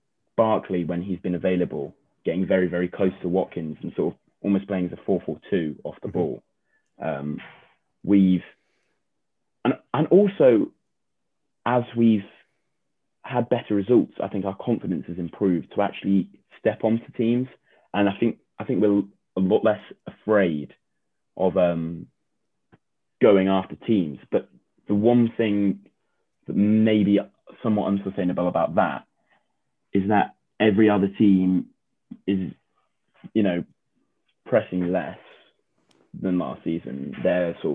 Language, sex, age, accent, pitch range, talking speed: English, male, 20-39, British, 90-105 Hz, 135 wpm